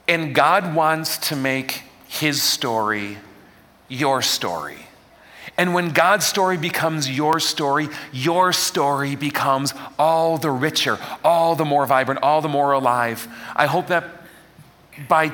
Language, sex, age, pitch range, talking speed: English, male, 40-59, 110-150 Hz, 135 wpm